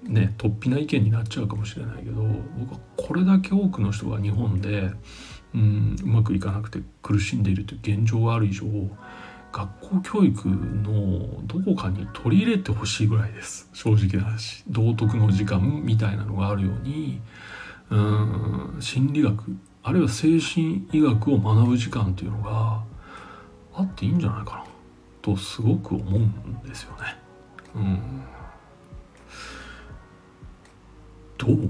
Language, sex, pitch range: Japanese, male, 100-120 Hz